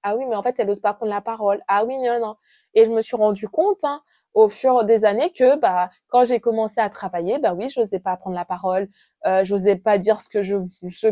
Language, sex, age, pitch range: French, female, 20-39, 205-260 Hz